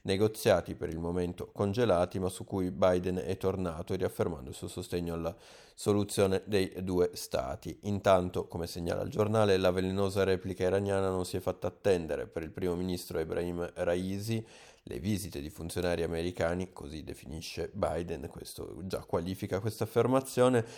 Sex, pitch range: male, 90-100 Hz